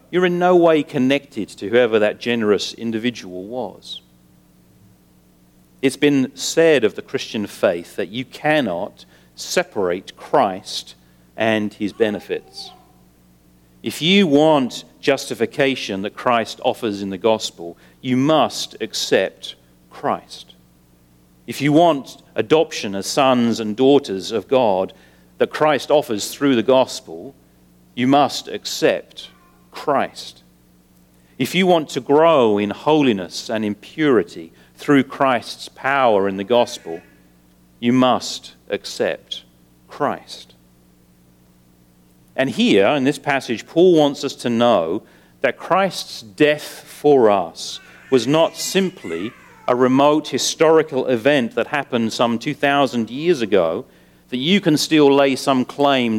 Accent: British